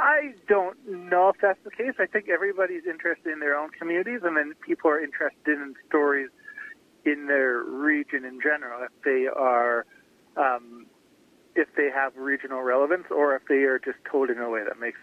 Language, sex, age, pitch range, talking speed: English, male, 40-59, 125-165 Hz, 195 wpm